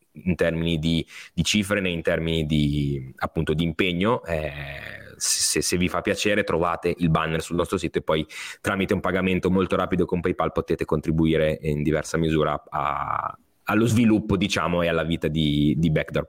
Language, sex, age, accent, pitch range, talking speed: Italian, male, 20-39, native, 85-115 Hz, 175 wpm